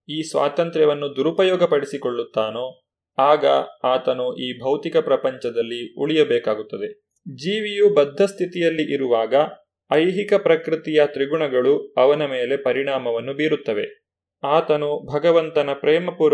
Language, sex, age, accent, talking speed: Kannada, male, 30-49, native, 90 wpm